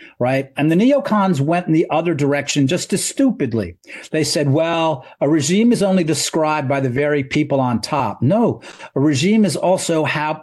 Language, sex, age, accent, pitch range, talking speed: English, male, 40-59, American, 135-180 Hz, 185 wpm